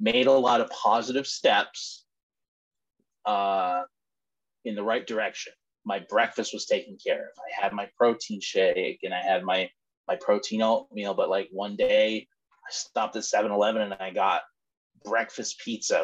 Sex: male